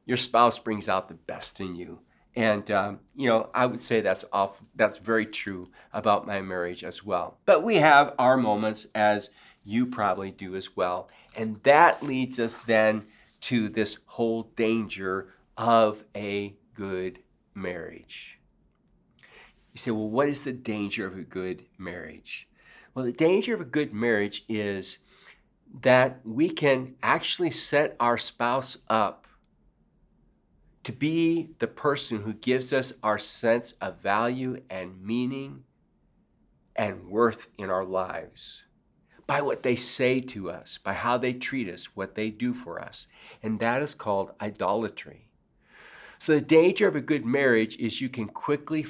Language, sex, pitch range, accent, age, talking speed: English, male, 105-130 Hz, American, 40-59, 155 wpm